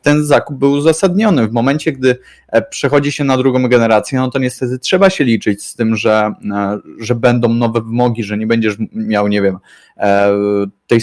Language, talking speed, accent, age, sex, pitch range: Polish, 175 wpm, native, 20-39, male, 110-130 Hz